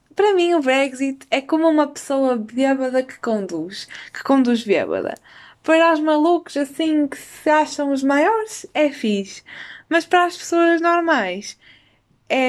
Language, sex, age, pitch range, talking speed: Portuguese, female, 20-39, 245-320 Hz, 150 wpm